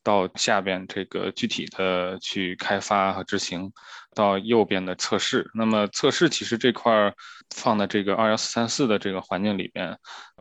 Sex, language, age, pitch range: male, Chinese, 20-39, 100-120 Hz